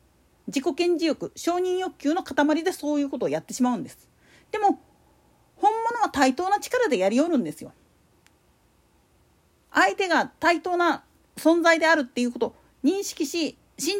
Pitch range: 265-355 Hz